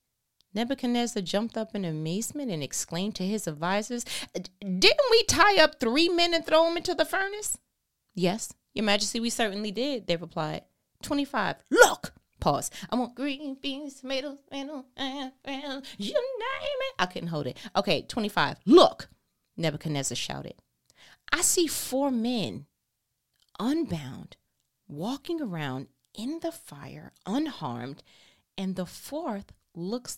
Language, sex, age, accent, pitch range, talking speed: English, female, 30-49, American, 180-275 Hz, 130 wpm